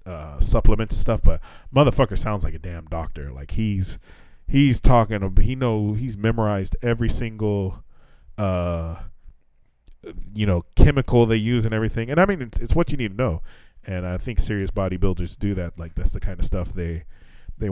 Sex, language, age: male, English, 20-39